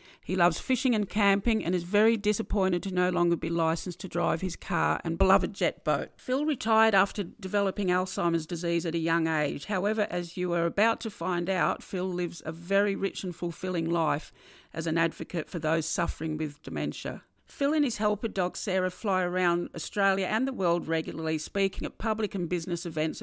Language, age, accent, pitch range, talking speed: English, 50-69, Australian, 170-205 Hz, 195 wpm